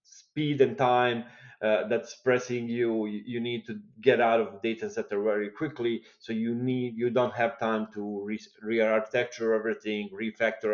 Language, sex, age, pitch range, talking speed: English, male, 30-49, 110-130 Hz, 155 wpm